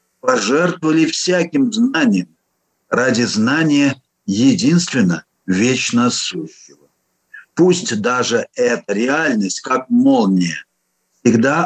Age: 50-69